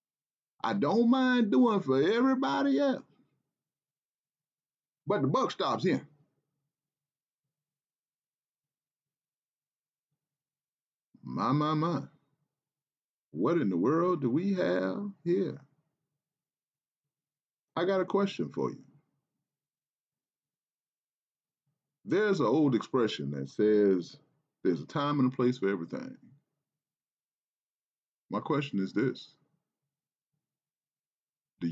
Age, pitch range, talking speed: 40-59, 135-155 Hz, 90 wpm